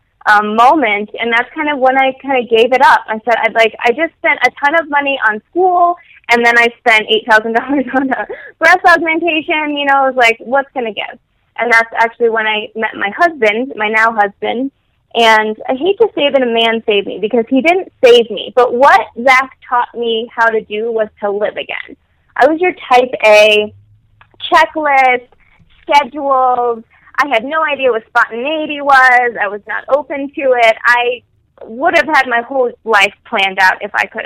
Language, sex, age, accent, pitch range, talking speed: English, female, 20-39, American, 215-270 Hz, 195 wpm